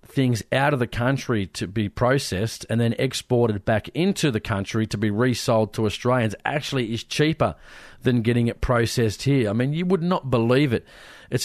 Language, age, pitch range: English, 30-49, 110-130 Hz